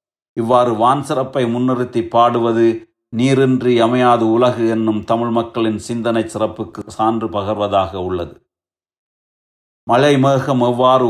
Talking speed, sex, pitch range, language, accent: 95 wpm, male, 110-125 Hz, Tamil, native